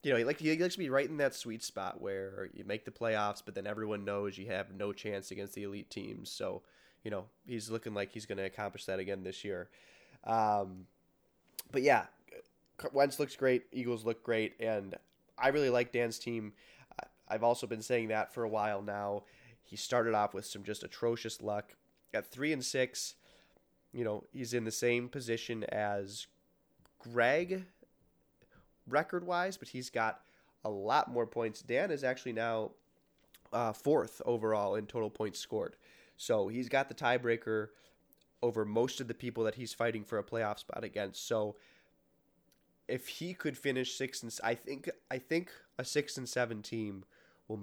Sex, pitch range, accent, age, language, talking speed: male, 105-125 Hz, American, 20-39, English, 180 wpm